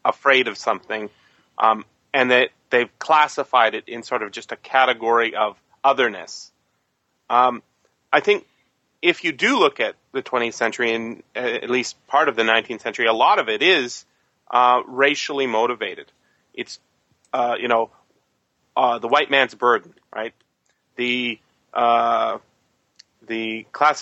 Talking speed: 145 wpm